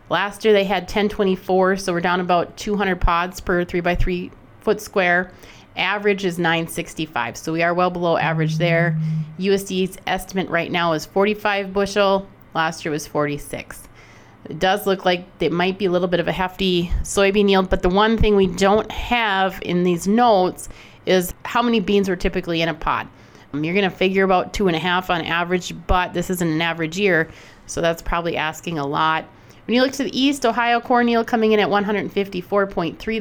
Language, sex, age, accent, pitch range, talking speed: English, female, 30-49, American, 165-200 Hz, 185 wpm